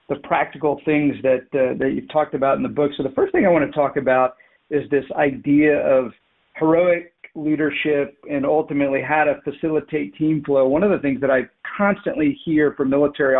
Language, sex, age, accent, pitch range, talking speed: English, male, 50-69, American, 140-160 Hz, 195 wpm